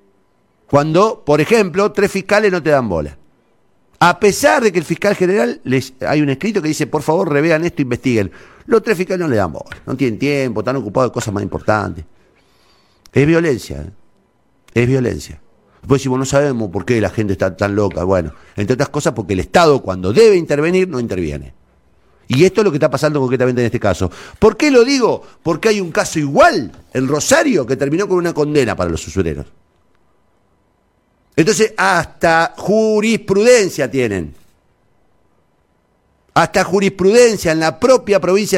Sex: male